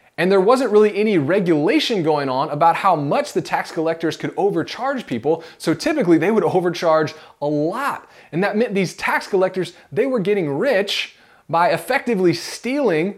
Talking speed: 170 wpm